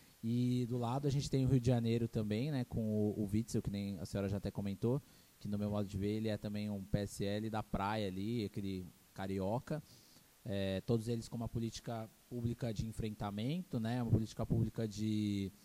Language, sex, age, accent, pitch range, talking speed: Portuguese, male, 20-39, Brazilian, 105-125 Hz, 205 wpm